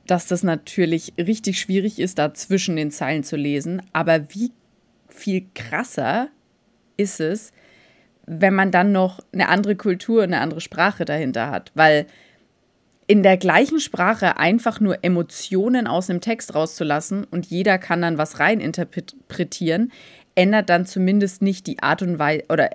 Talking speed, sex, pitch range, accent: 155 wpm, female, 170-215 Hz, German